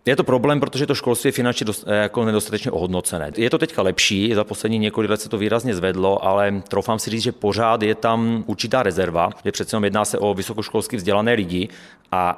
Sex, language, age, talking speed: male, Czech, 30-49, 210 wpm